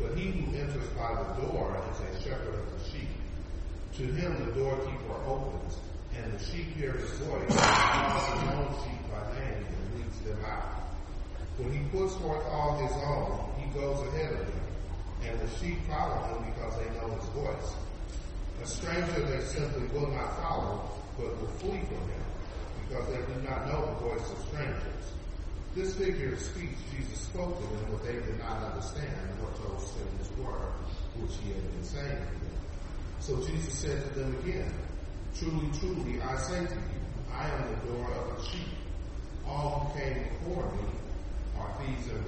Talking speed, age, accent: 185 wpm, 40-59, American